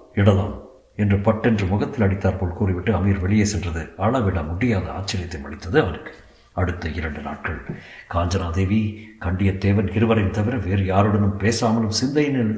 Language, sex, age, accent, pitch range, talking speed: Tamil, male, 50-69, native, 85-105 Hz, 120 wpm